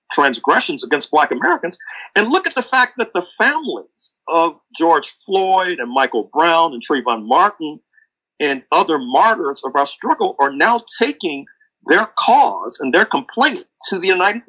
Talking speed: 155 wpm